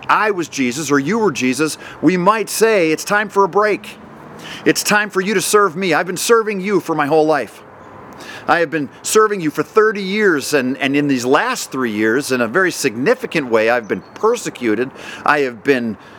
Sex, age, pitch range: male, 40-59, 115-160 Hz